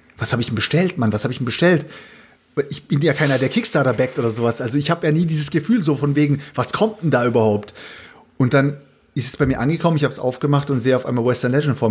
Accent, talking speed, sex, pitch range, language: German, 265 wpm, male, 135-160 Hz, German